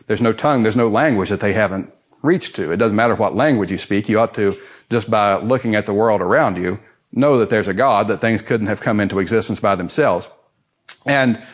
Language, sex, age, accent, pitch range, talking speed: English, male, 40-59, American, 100-130 Hz, 230 wpm